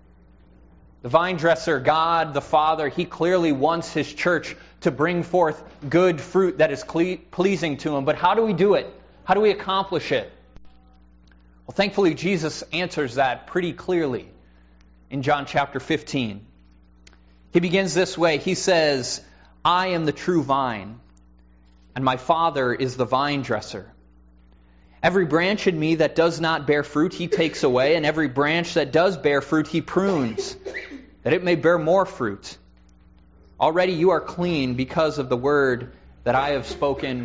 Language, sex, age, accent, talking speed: English, male, 20-39, American, 160 wpm